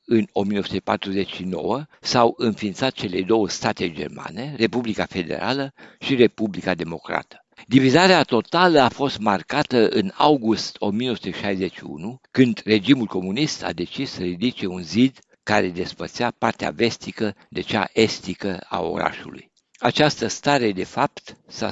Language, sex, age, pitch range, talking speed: Romanian, male, 60-79, 100-140 Hz, 120 wpm